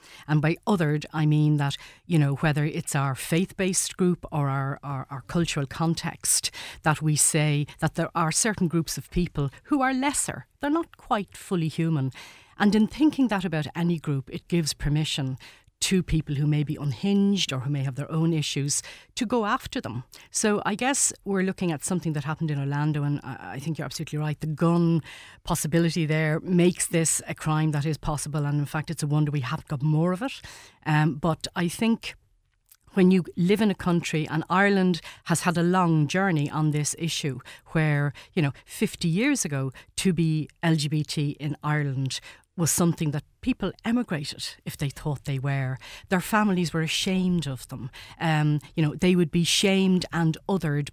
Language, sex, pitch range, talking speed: English, female, 145-175 Hz, 190 wpm